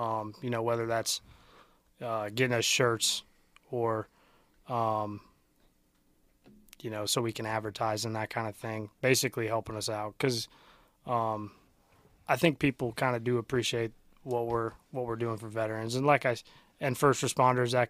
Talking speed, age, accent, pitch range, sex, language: 165 wpm, 20-39, American, 110-130 Hz, male, English